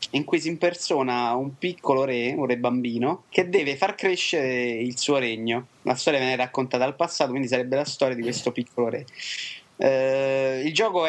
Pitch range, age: 120-160 Hz, 30-49